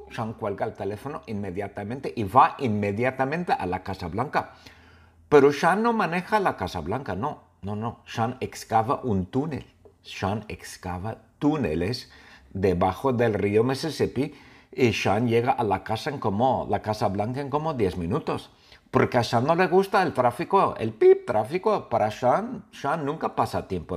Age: 50-69